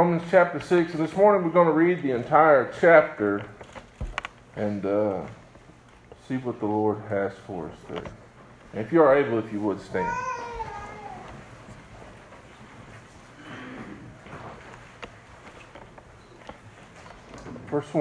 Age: 50-69